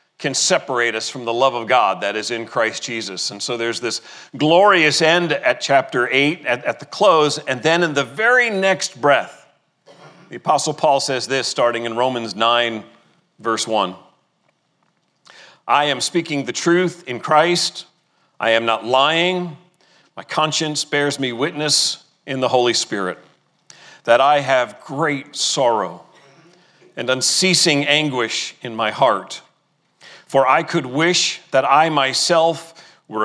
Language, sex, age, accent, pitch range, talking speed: English, male, 40-59, American, 120-155 Hz, 150 wpm